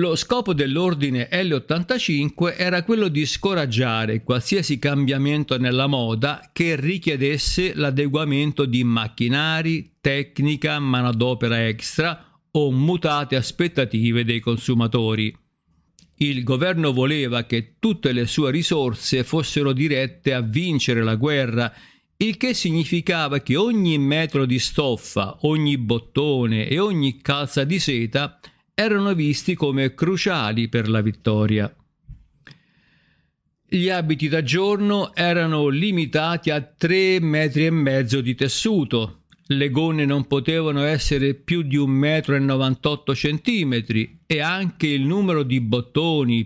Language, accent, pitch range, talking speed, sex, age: Italian, native, 130-165 Hz, 110 wpm, male, 50-69